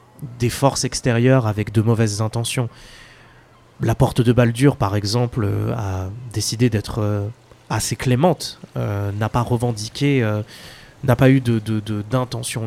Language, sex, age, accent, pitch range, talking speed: French, male, 20-39, French, 110-135 Hz, 140 wpm